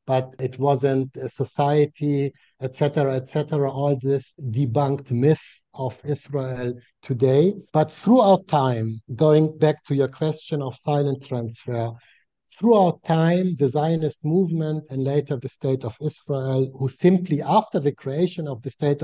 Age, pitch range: 60-79, 130-150 Hz